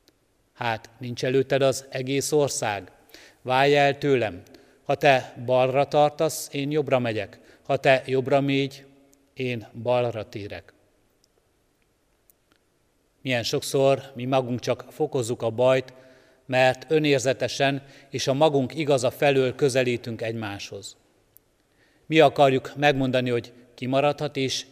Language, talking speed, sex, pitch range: Hungarian, 115 wpm, male, 120-140 Hz